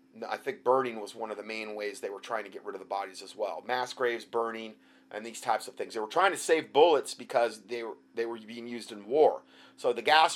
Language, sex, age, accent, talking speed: English, male, 30-49, American, 265 wpm